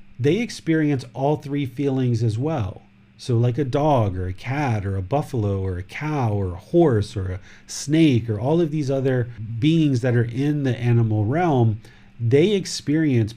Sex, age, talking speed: male, 40-59, 180 wpm